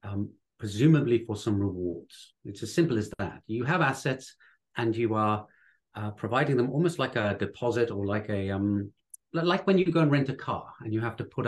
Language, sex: English, male